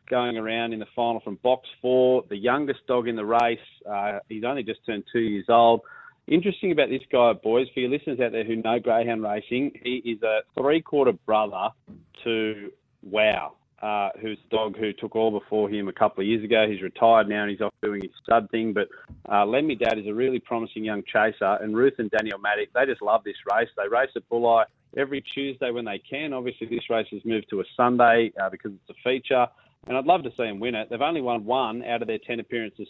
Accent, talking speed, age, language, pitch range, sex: Australian, 230 wpm, 30-49, English, 110-125 Hz, male